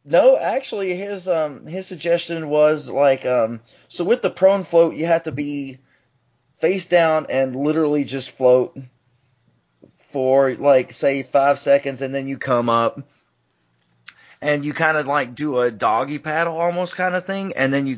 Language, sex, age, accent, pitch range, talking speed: English, male, 30-49, American, 125-170 Hz, 165 wpm